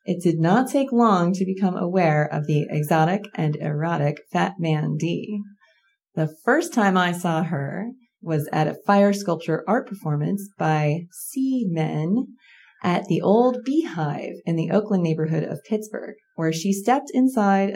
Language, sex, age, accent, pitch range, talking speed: English, female, 30-49, American, 165-225 Hz, 155 wpm